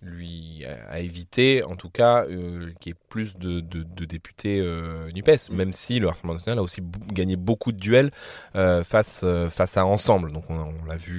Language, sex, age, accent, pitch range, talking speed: French, male, 20-39, French, 85-110 Hz, 210 wpm